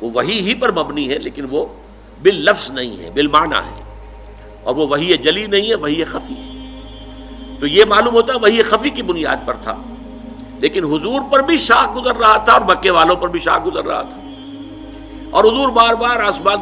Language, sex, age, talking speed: Urdu, male, 60-79, 195 wpm